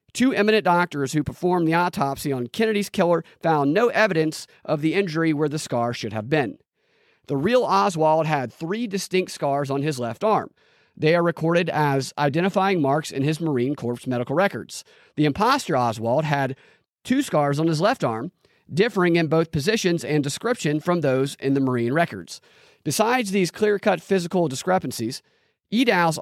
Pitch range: 150-195 Hz